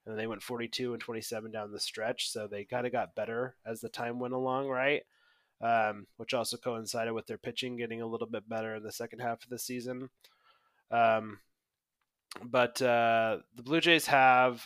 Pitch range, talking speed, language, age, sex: 105-125 Hz, 190 wpm, English, 20-39, male